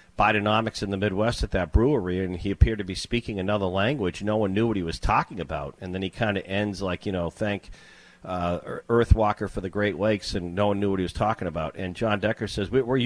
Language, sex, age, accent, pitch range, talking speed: English, male, 50-69, American, 90-105 Hz, 245 wpm